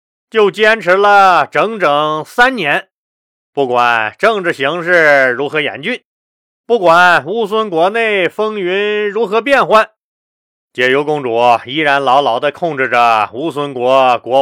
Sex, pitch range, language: male, 125-175 Hz, Chinese